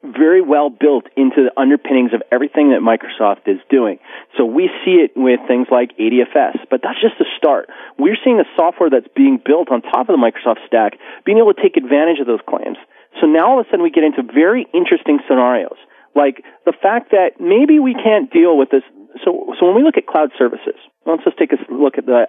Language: English